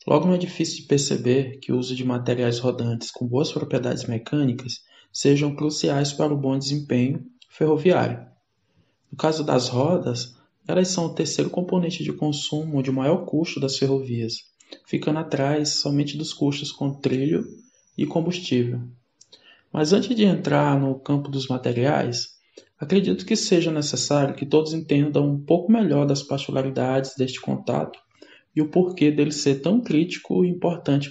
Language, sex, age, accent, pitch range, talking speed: Portuguese, male, 20-39, Brazilian, 130-160 Hz, 150 wpm